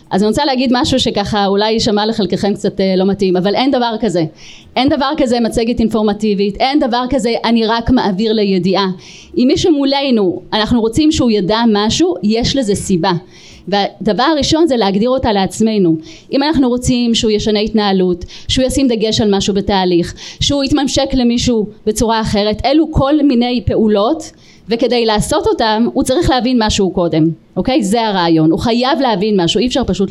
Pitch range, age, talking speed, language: 195-255 Hz, 30-49, 170 wpm, Hebrew